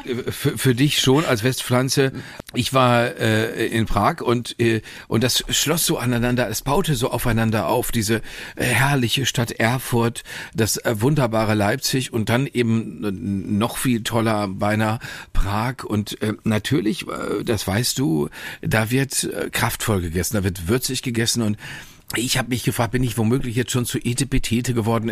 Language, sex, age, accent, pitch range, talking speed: German, male, 40-59, German, 110-130 Hz, 155 wpm